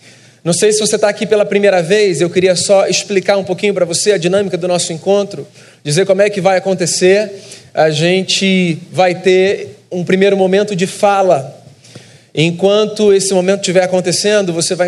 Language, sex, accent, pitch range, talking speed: Portuguese, male, Brazilian, 165-195 Hz, 180 wpm